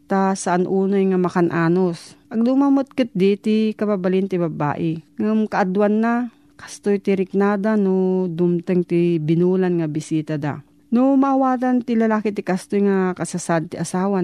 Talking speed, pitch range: 145 wpm, 175-215 Hz